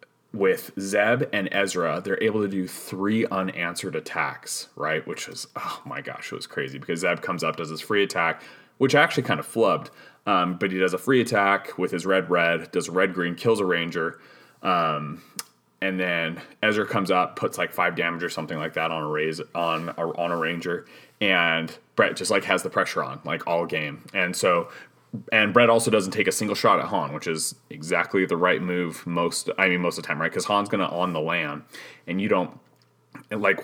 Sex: male